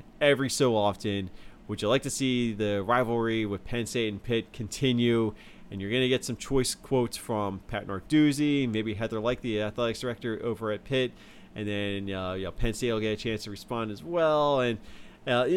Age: 30-49